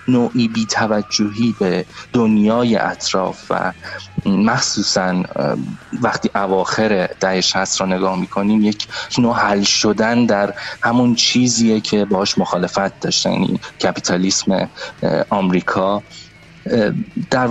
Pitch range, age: 95-110 Hz, 30-49